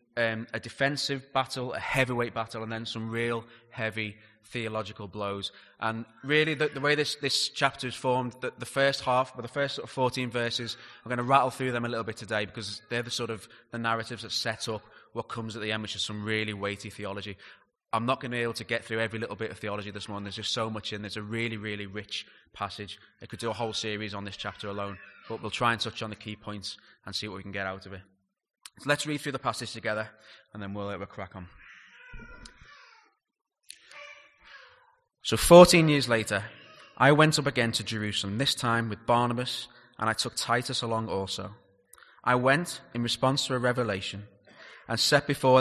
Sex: male